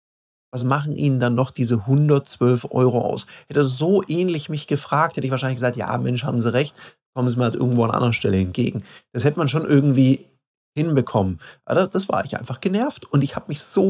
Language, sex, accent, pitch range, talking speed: German, male, German, 115-140 Hz, 220 wpm